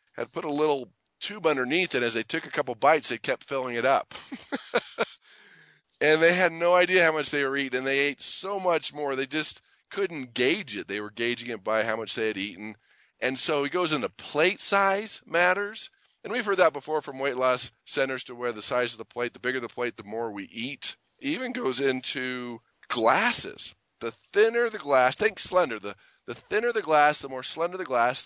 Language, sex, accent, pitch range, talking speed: English, male, American, 120-175 Hz, 215 wpm